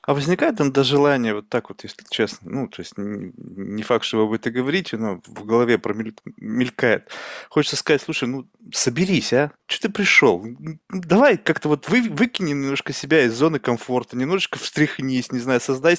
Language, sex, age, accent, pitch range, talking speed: Russian, male, 20-39, native, 130-170 Hz, 175 wpm